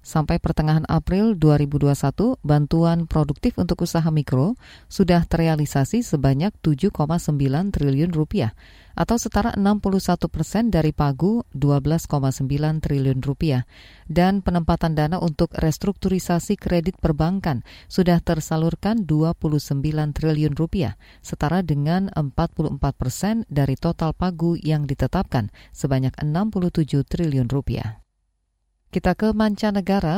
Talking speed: 105 wpm